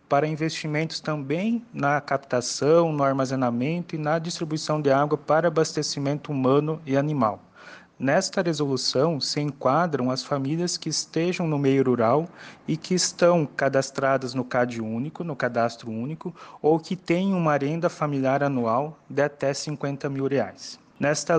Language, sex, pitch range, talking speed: Portuguese, male, 130-165 Hz, 145 wpm